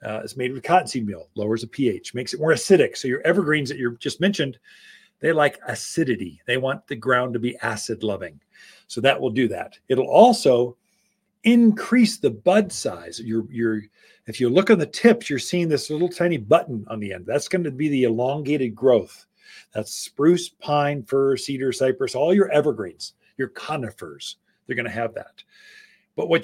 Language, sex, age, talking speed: English, male, 40-59, 185 wpm